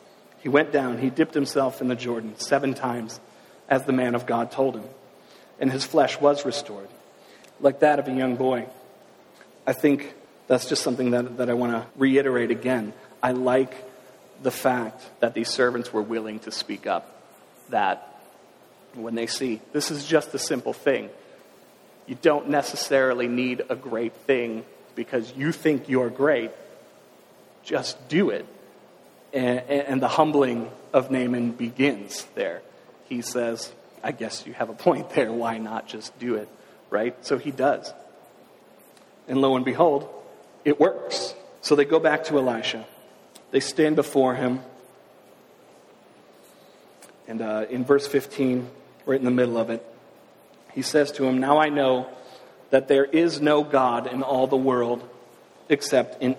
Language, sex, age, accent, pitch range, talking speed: English, male, 40-59, American, 120-140 Hz, 155 wpm